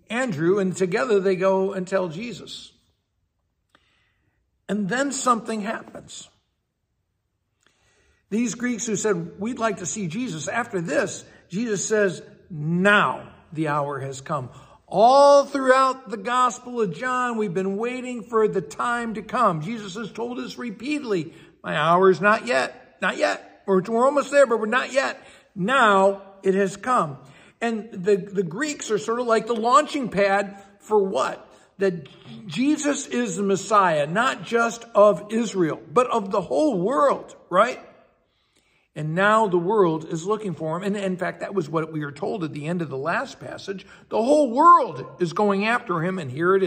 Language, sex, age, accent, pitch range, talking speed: English, male, 60-79, American, 180-235 Hz, 165 wpm